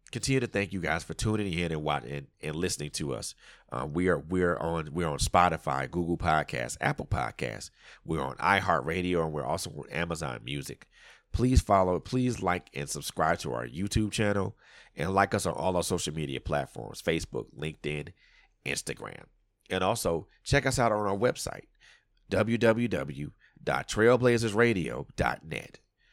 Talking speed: 155 wpm